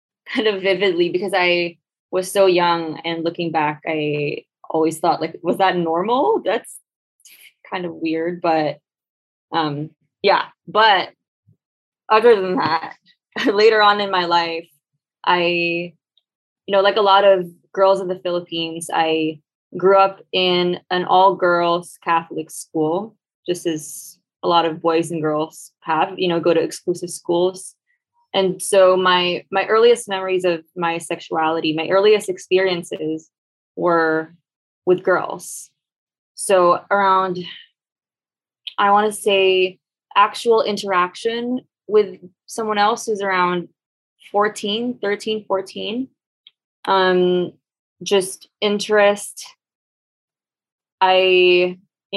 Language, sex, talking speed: English, female, 120 wpm